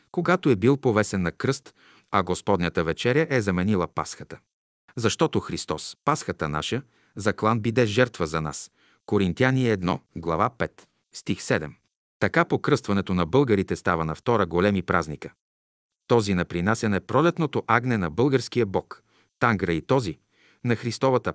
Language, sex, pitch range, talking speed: Bulgarian, male, 95-125 Hz, 140 wpm